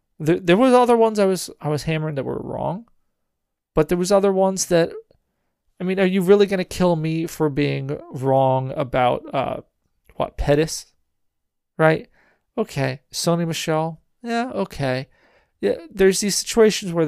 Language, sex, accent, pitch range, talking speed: English, male, American, 145-195 Hz, 155 wpm